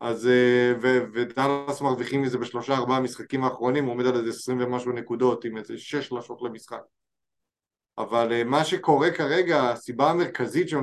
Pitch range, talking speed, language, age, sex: 125-160 Hz, 155 wpm, Hebrew, 20-39, male